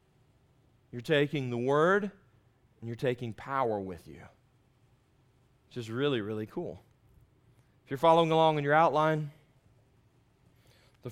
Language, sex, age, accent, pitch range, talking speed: English, male, 30-49, American, 115-150 Hz, 125 wpm